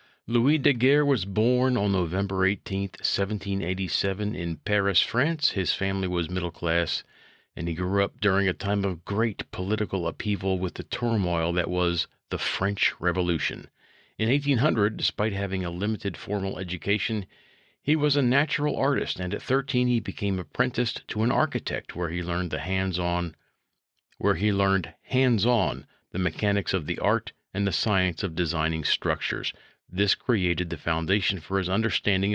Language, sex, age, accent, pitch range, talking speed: English, male, 50-69, American, 90-120 Hz, 165 wpm